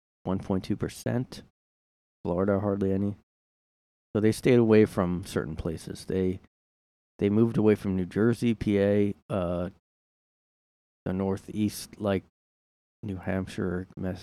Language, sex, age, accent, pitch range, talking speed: English, male, 20-39, American, 85-110 Hz, 105 wpm